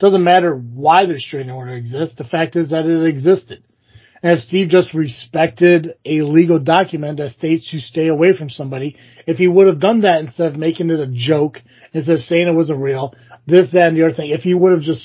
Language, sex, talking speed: English, male, 230 wpm